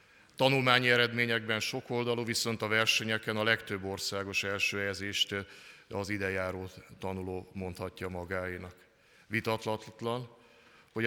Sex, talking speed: male, 105 wpm